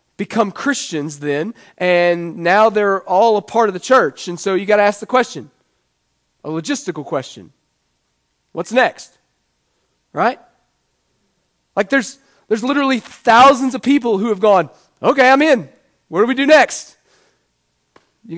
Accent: American